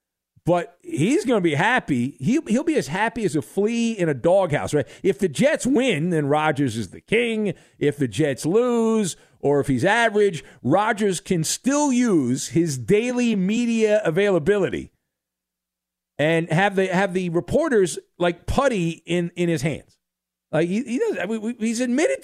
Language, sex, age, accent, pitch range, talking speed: English, male, 50-69, American, 145-230 Hz, 170 wpm